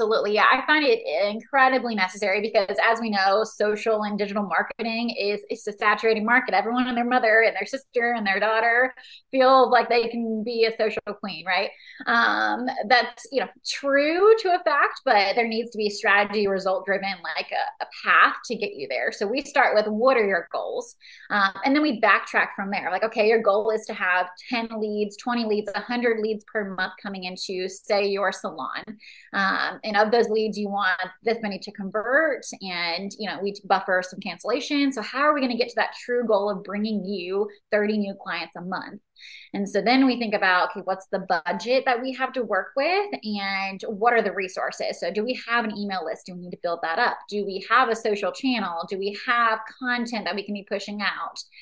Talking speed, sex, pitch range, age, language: 215 wpm, female, 200-245 Hz, 20-39, English